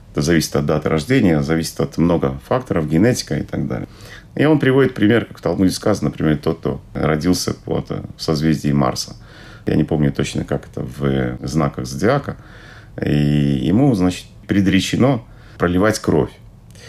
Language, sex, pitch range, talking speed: Russian, male, 80-110 Hz, 155 wpm